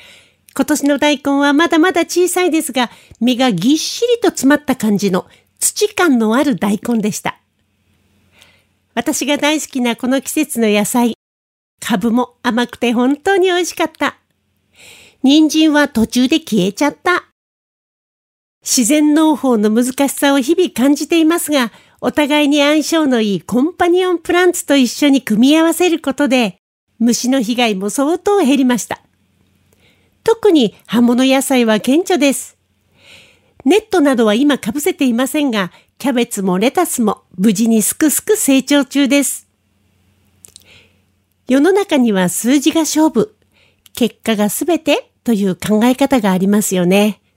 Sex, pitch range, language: female, 210-300 Hz, Japanese